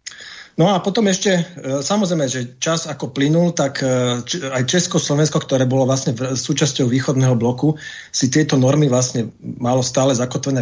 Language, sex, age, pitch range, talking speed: Slovak, male, 40-59, 125-155 Hz, 145 wpm